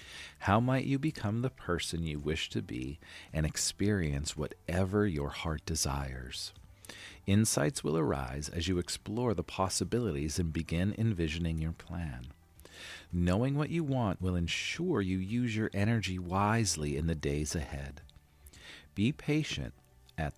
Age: 40-59